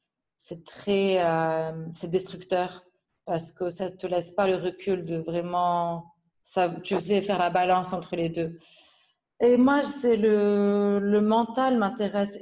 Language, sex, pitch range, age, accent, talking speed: French, female, 180-205 Hz, 30-49, French, 155 wpm